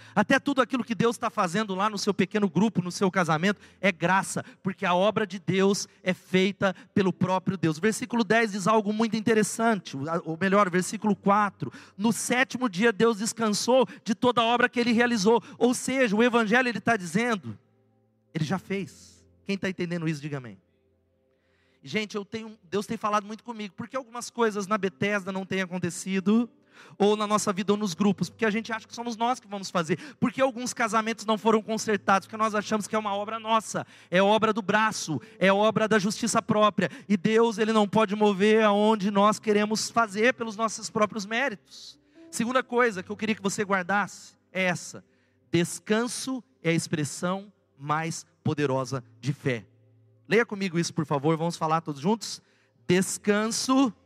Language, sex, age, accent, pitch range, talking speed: Portuguese, male, 40-59, Brazilian, 180-225 Hz, 180 wpm